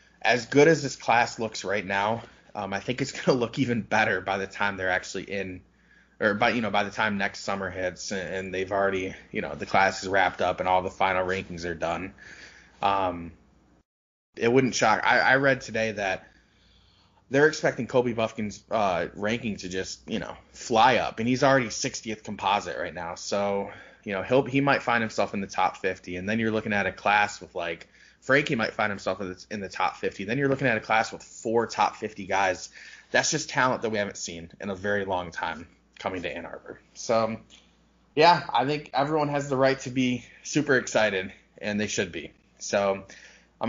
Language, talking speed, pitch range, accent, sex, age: English, 215 wpm, 95-130 Hz, American, male, 20-39